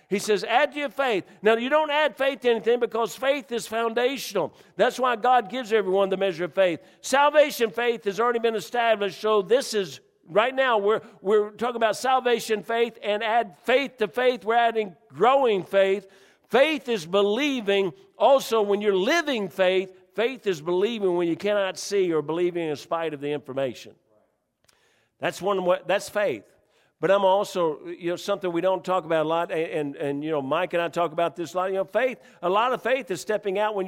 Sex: male